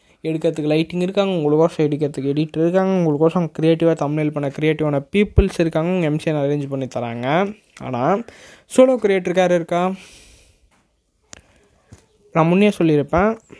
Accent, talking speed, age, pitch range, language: native, 120 wpm, 20-39, 145-180 Hz, Tamil